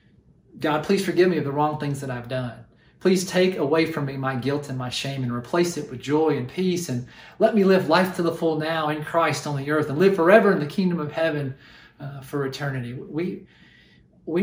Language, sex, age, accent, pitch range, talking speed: English, male, 40-59, American, 145-220 Hz, 230 wpm